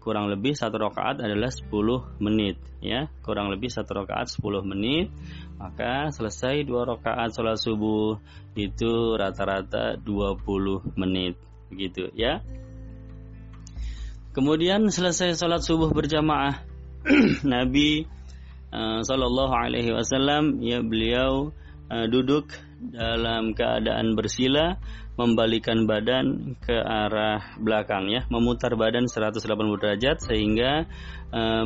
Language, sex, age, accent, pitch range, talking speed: Indonesian, male, 20-39, native, 105-125 Hz, 105 wpm